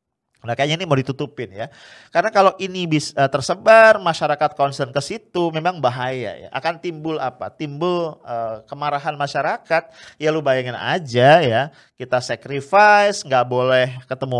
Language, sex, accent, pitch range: English, male, Indonesian, 125-170 Hz